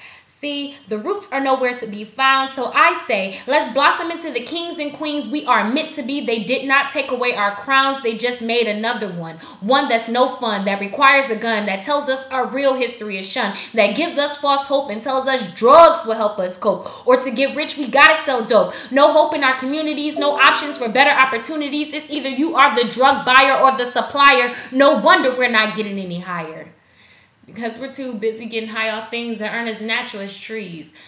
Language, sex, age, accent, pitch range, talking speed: English, female, 20-39, American, 220-285 Hz, 220 wpm